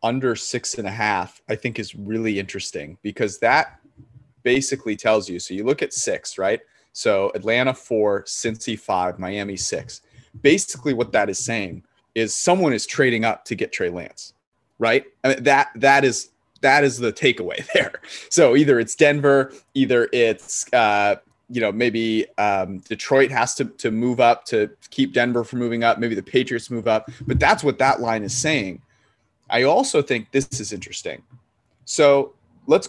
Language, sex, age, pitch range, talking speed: English, male, 30-49, 105-135 Hz, 175 wpm